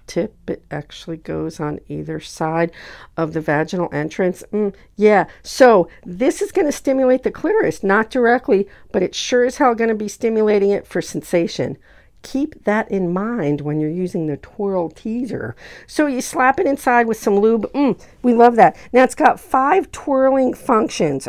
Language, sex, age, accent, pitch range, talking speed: English, female, 50-69, American, 160-235 Hz, 180 wpm